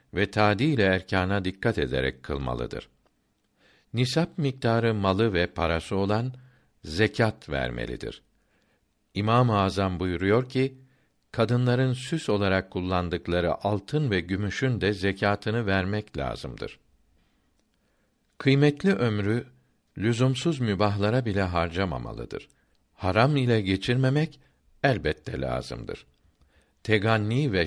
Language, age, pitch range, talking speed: Turkish, 60-79, 90-125 Hz, 95 wpm